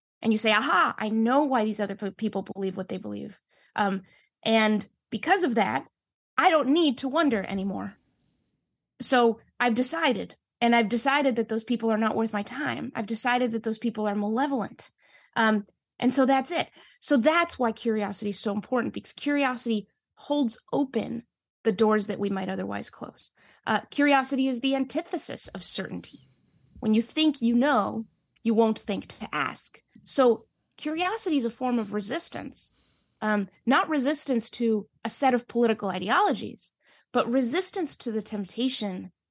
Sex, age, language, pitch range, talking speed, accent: female, 20-39, English, 205-260 Hz, 165 wpm, American